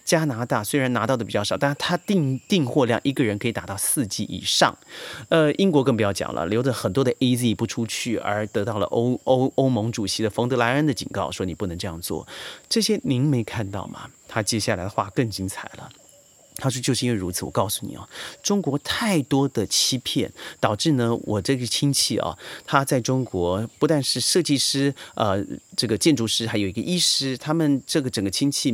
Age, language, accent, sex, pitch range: 30-49, Chinese, native, male, 110-150 Hz